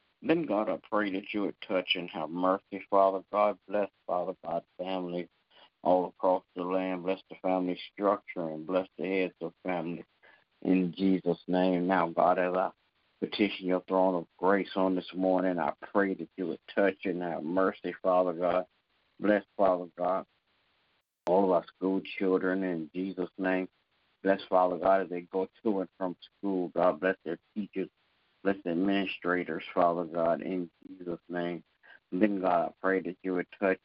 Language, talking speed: English, 175 wpm